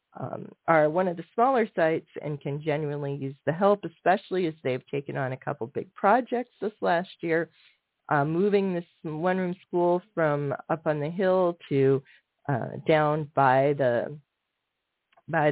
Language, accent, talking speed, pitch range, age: English, American, 160 wpm, 145-185 Hz, 40-59